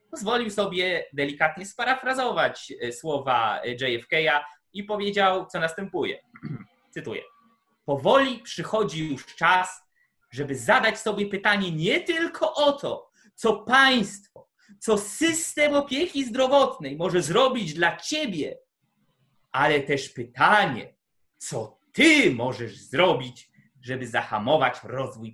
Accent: native